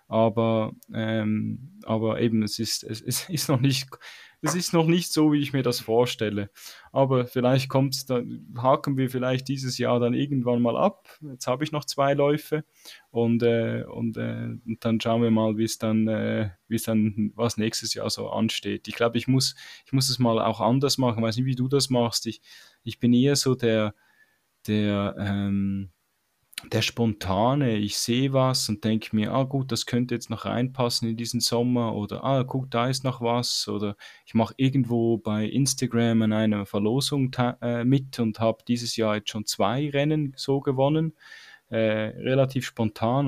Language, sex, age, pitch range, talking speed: German, male, 10-29, 110-135 Hz, 185 wpm